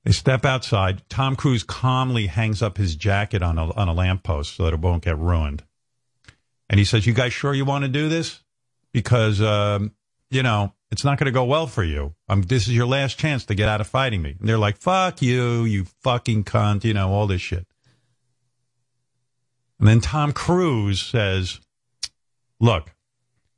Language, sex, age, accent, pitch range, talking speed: English, male, 50-69, American, 105-130 Hz, 190 wpm